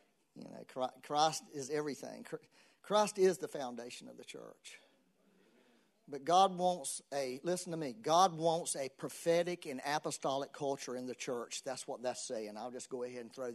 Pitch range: 130-175 Hz